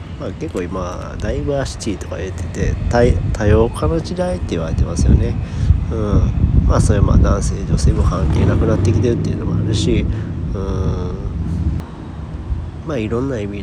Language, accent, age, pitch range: Japanese, native, 40-59, 85-105 Hz